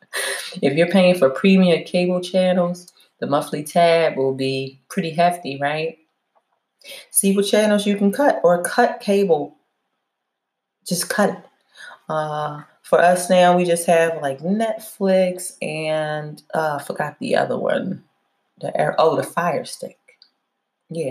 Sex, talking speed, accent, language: female, 140 wpm, American, English